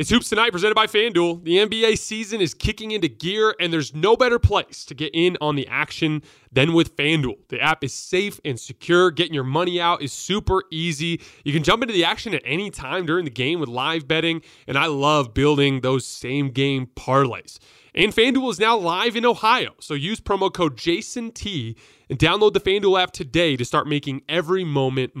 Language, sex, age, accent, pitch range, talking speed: English, male, 20-39, American, 145-195 Hz, 205 wpm